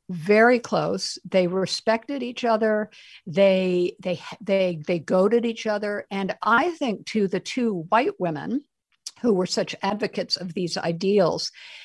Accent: American